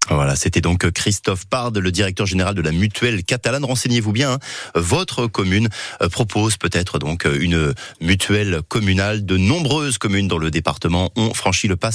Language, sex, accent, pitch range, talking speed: French, male, French, 95-130 Hz, 160 wpm